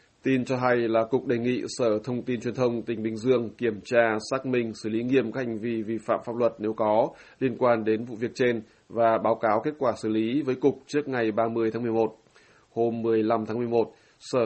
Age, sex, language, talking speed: 20-39, male, Vietnamese, 235 wpm